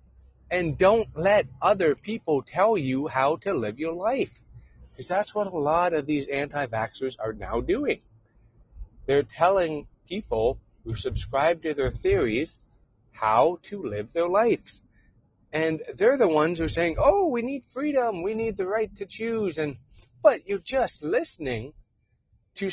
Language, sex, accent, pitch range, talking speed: English, male, American, 120-185 Hz, 155 wpm